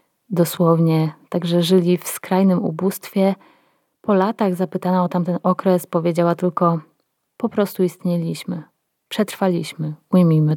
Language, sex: Polish, female